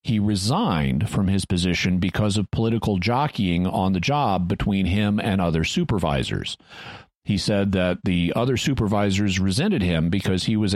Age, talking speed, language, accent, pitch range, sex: 50-69, 155 wpm, English, American, 95-125 Hz, male